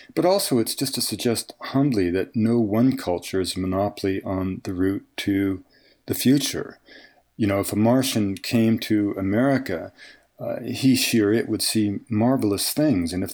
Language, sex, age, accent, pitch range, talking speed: English, male, 50-69, American, 95-105 Hz, 175 wpm